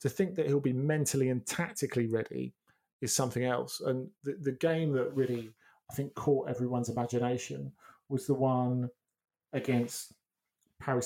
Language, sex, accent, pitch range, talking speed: English, male, British, 120-135 Hz, 150 wpm